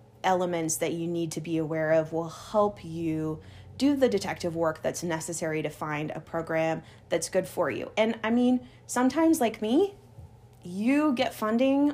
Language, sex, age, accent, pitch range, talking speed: English, female, 30-49, American, 165-220 Hz, 170 wpm